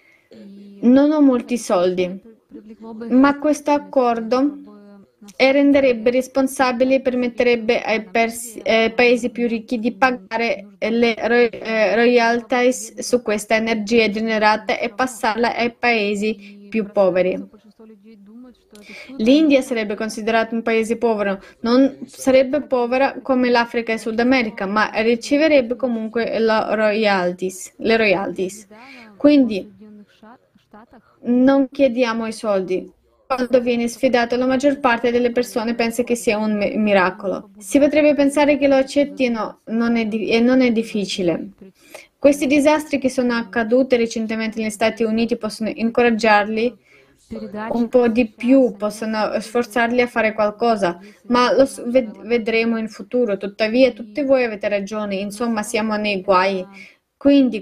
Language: Italian